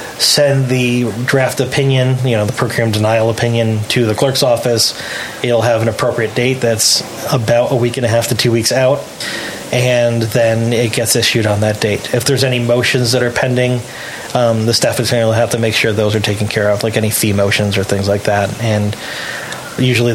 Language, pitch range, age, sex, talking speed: English, 110-135 Hz, 30-49, male, 210 wpm